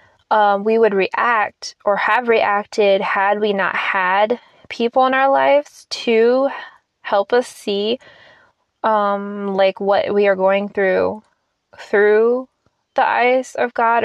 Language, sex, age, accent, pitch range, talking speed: English, female, 20-39, American, 200-230 Hz, 130 wpm